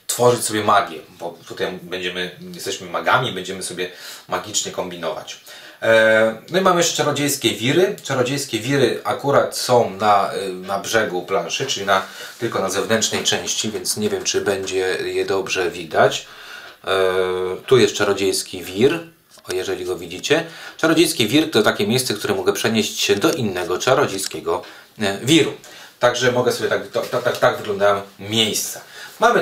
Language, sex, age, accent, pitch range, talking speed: Polish, male, 30-49, native, 105-160 Hz, 140 wpm